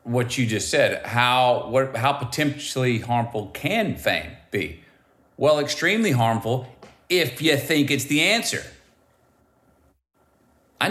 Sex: male